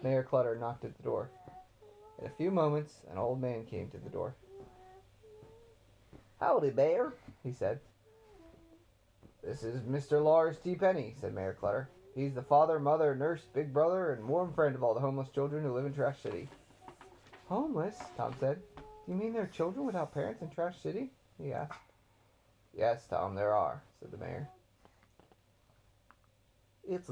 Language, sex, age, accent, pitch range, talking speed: English, male, 30-49, American, 115-160 Hz, 160 wpm